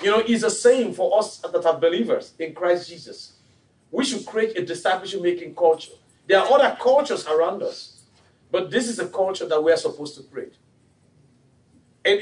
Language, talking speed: English, 180 wpm